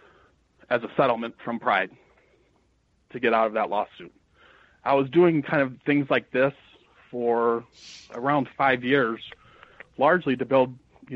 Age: 30-49